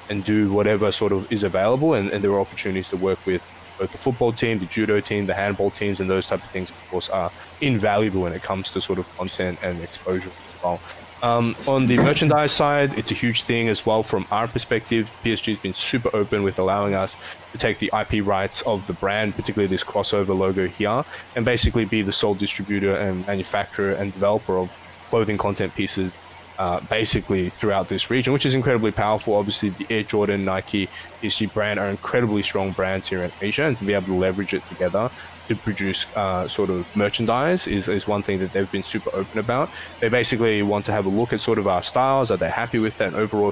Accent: Australian